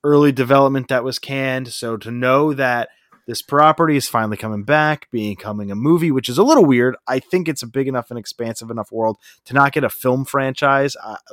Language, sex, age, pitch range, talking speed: English, male, 30-49, 115-140 Hz, 210 wpm